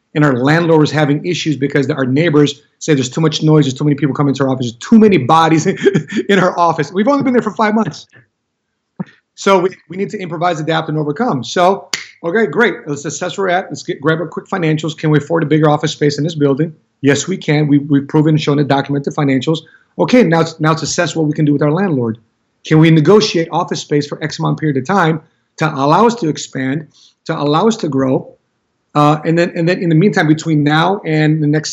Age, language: 30-49, English